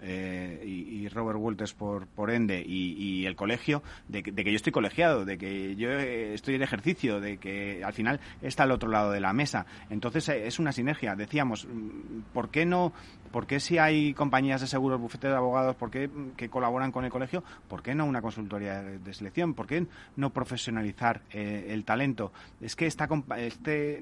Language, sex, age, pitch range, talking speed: Spanish, male, 30-49, 105-135 Hz, 200 wpm